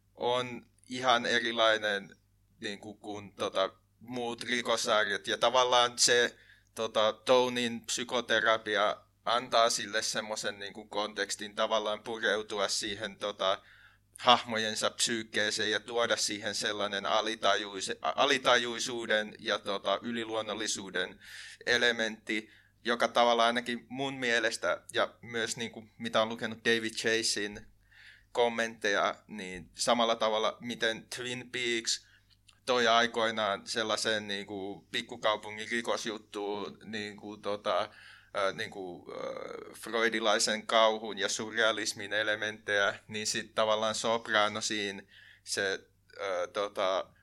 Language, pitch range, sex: Finnish, 105-120 Hz, male